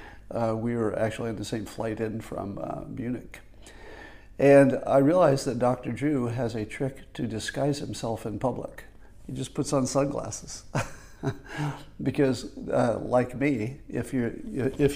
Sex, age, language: male, 50-69, English